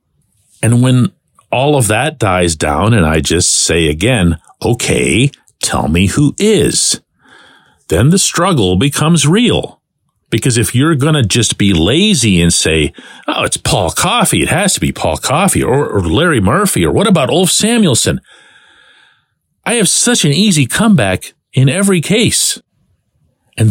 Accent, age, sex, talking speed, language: American, 50-69, male, 155 wpm, English